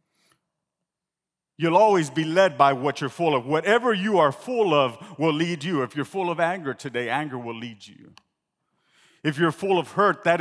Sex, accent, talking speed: male, American, 190 wpm